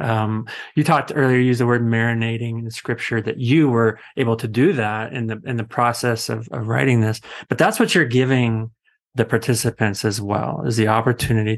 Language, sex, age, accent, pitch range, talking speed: English, male, 30-49, American, 115-140 Hz, 205 wpm